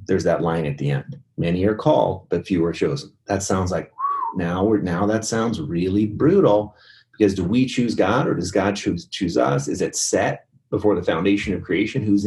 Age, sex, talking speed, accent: 30-49, male, 205 wpm, American